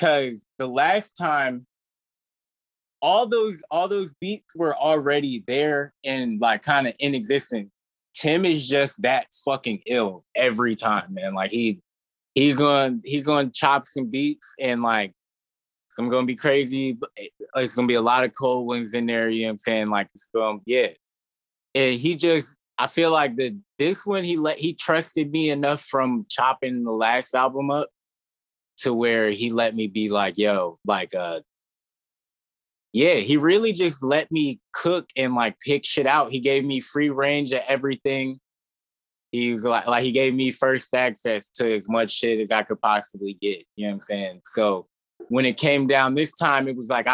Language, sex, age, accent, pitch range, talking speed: English, male, 20-39, American, 115-145 Hz, 180 wpm